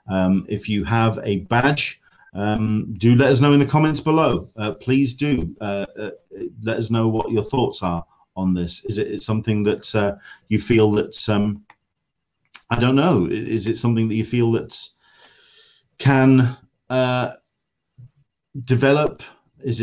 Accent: British